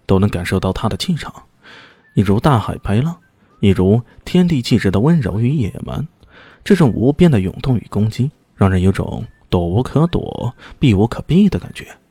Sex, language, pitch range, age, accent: male, Chinese, 100-145 Hz, 20-39, native